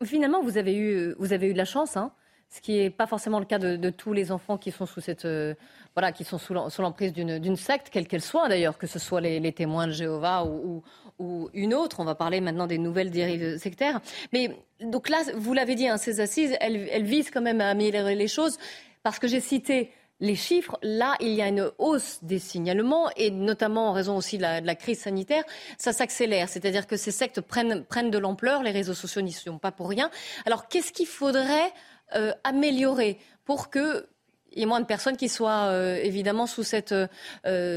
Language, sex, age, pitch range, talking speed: French, female, 30-49, 190-255 Hz, 225 wpm